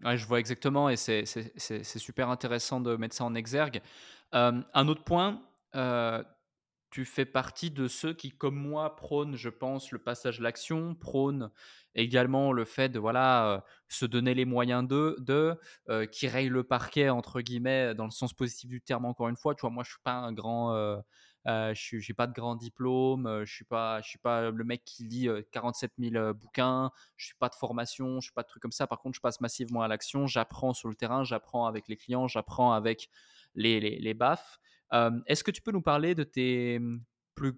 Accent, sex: French, male